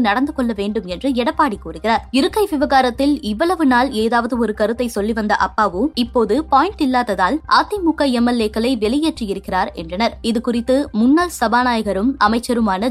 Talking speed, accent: 125 wpm, native